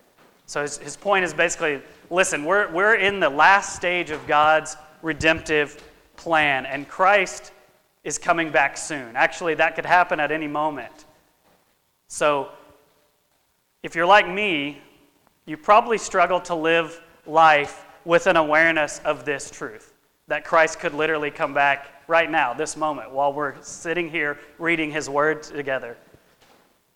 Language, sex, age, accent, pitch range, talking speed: English, male, 30-49, American, 145-165 Hz, 140 wpm